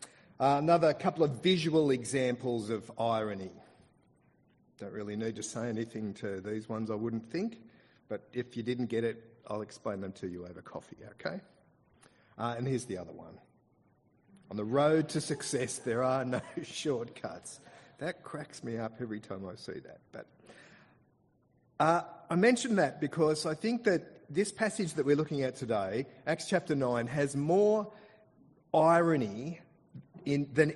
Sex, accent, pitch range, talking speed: male, Australian, 115-165 Hz, 160 wpm